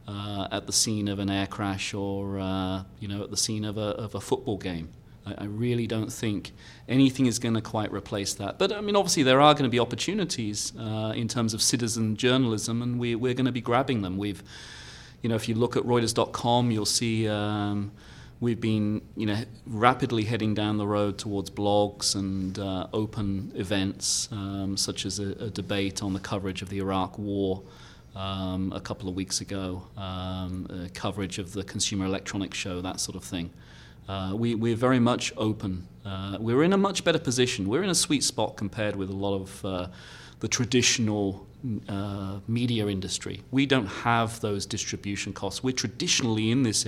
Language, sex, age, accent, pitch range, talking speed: English, male, 30-49, British, 100-115 Hz, 195 wpm